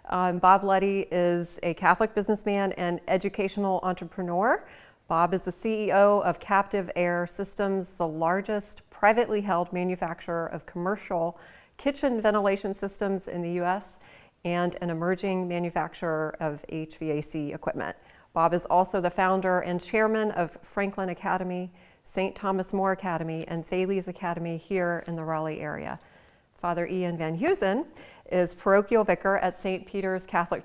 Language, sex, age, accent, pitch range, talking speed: English, female, 40-59, American, 170-200 Hz, 140 wpm